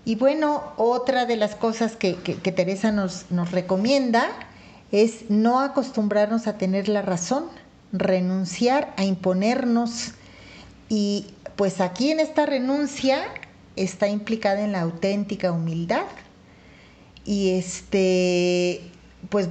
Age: 40-59